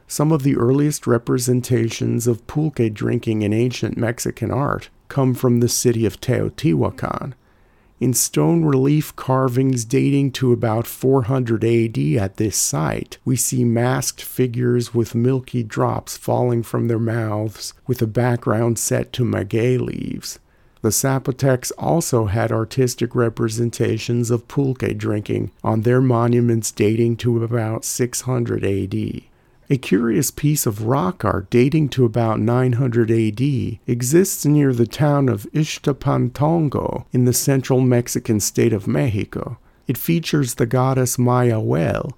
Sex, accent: male, American